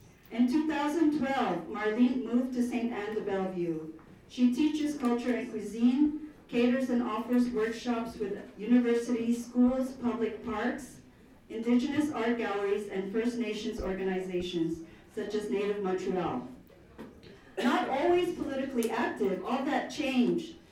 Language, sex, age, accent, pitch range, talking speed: English, female, 40-59, American, 195-245 Hz, 120 wpm